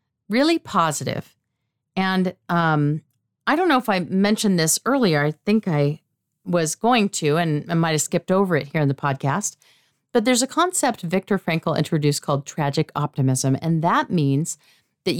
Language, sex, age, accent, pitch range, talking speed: English, female, 40-59, American, 150-210 Hz, 165 wpm